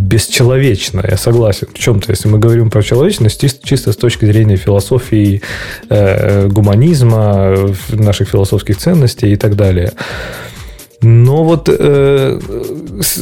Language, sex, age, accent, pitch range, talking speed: Russian, male, 20-39, native, 100-130 Hz, 125 wpm